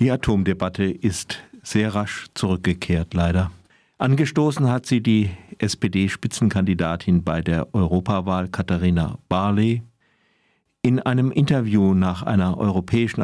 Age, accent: 50-69, German